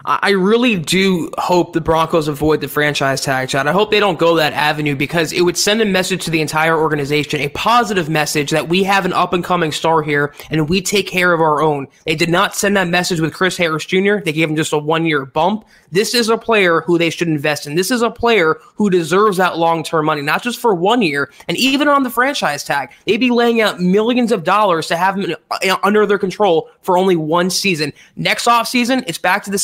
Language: English